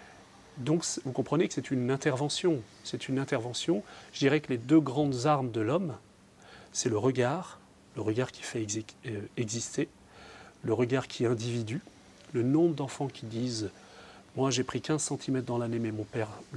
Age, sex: 40-59, male